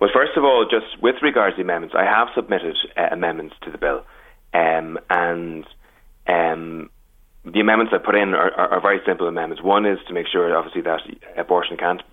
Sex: male